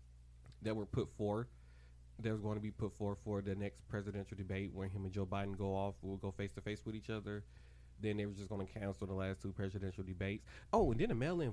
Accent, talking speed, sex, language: American, 250 wpm, male, English